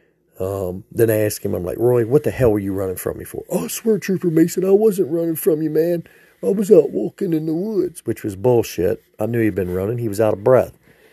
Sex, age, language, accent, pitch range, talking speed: male, 40-59, English, American, 100-130 Hz, 260 wpm